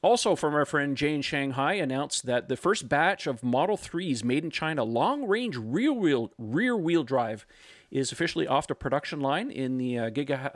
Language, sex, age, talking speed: English, male, 40-59, 190 wpm